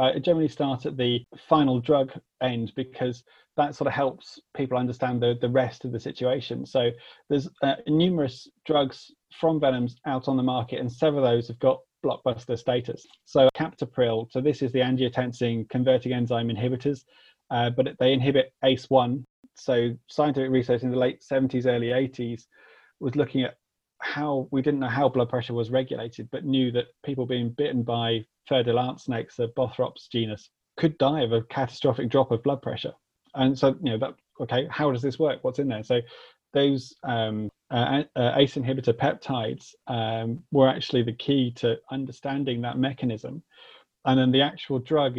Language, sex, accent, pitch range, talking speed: English, male, British, 120-140 Hz, 175 wpm